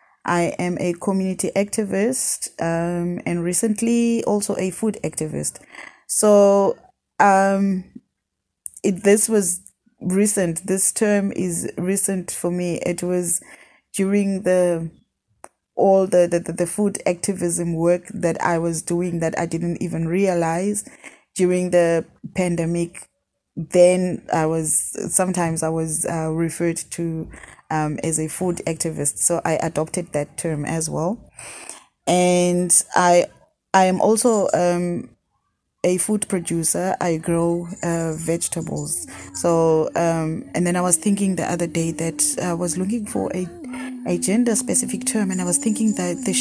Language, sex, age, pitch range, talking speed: English, female, 20-39, 165-200 Hz, 140 wpm